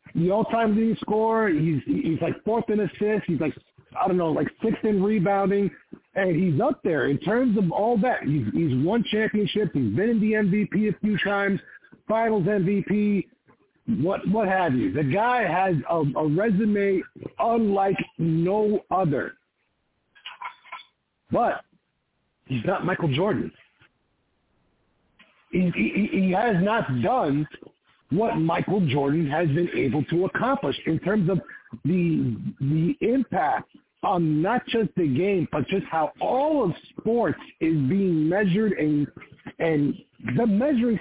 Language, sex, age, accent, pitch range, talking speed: English, male, 50-69, American, 165-215 Hz, 145 wpm